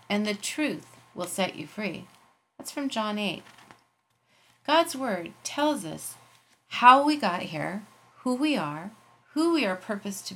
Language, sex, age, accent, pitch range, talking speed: English, female, 30-49, American, 185-245 Hz, 155 wpm